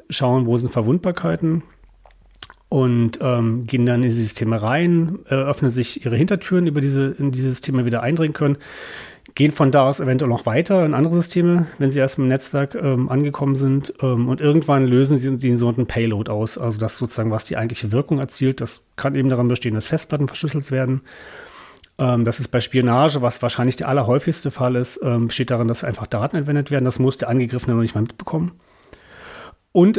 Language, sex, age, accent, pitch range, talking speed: German, male, 40-59, German, 120-145 Hz, 200 wpm